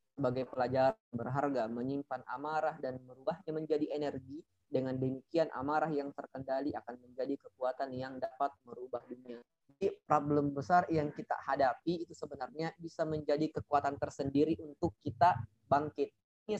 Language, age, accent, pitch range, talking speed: Indonesian, 20-39, native, 135-160 Hz, 135 wpm